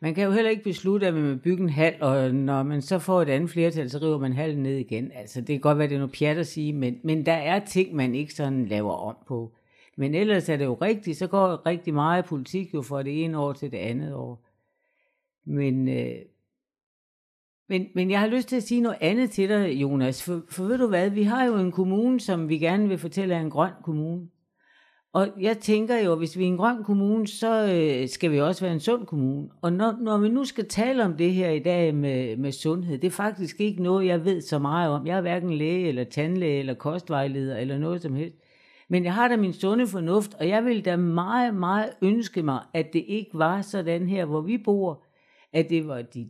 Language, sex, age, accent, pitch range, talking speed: Danish, female, 60-79, native, 145-200 Hz, 240 wpm